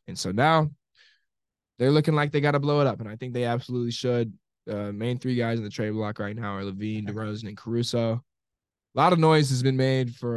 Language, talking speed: English, 245 wpm